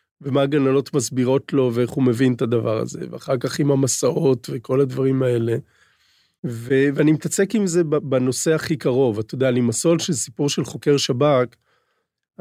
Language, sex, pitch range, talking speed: Hebrew, male, 125-150 Hz, 165 wpm